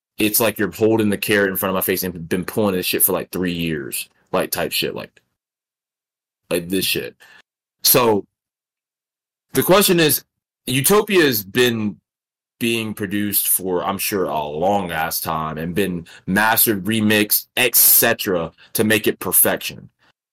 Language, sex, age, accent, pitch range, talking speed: English, male, 20-39, American, 90-120 Hz, 155 wpm